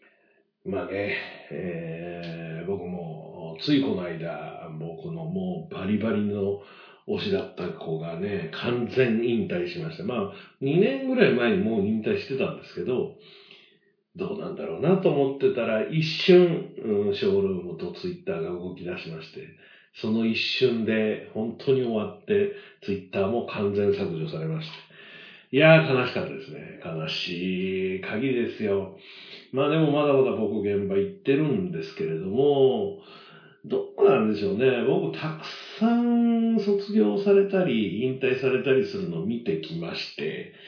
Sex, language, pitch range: male, Japanese, 120-200 Hz